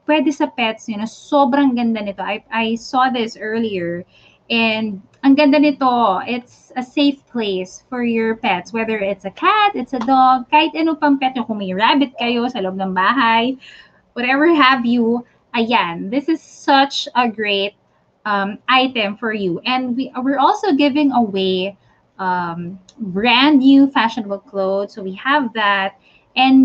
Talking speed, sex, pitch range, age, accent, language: 160 wpm, female, 220-295 Hz, 20-39, Filipino, English